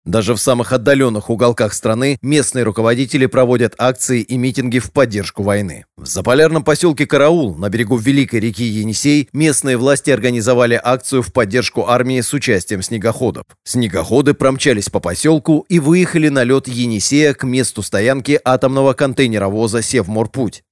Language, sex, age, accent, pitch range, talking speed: Russian, male, 30-49, native, 115-140 Hz, 140 wpm